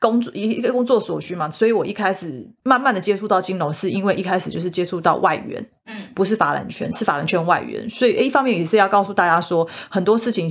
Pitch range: 170-215 Hz